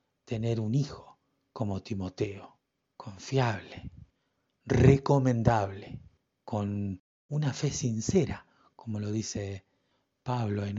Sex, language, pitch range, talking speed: male, Spanish, 105-135 Hz, 90 wpm